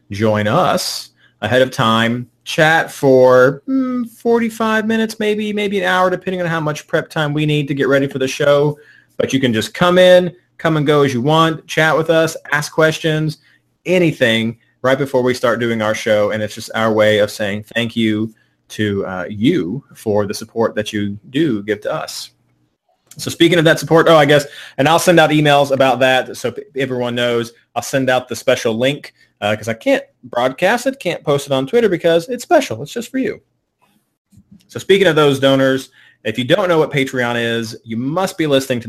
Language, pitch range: English, 110-155 Hz